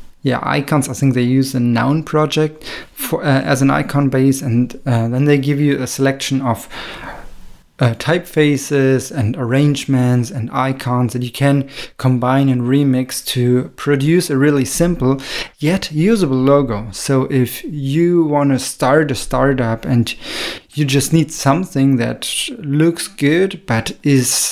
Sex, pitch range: male, 125-145 Hz